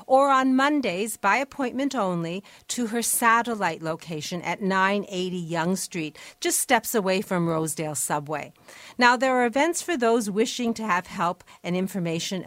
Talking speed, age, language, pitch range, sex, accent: 155 wpm, 40-59, English, 170-230 Hz, female, American